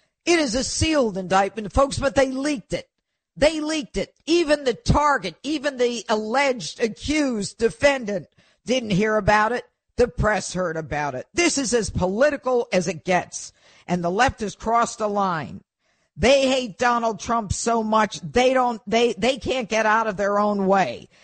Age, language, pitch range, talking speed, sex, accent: 50-69, English, 200-265 Hz, 175 wpm, female, American